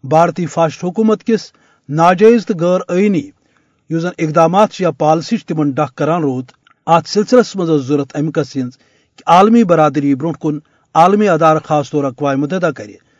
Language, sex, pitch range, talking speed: Urdu, male, 150-195 Hz, 140 wpm